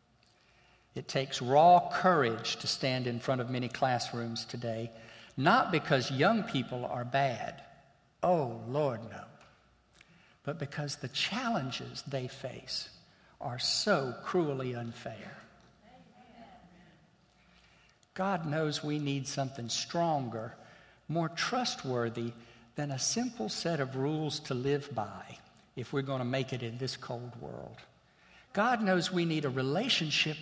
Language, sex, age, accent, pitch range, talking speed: English, male, 60-79, American, 125-170 Hz, 125 wpm